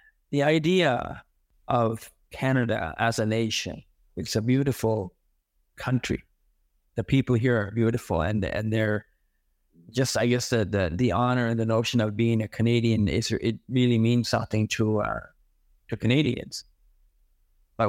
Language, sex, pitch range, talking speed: French, male, 110-130 Hz, 145 wpm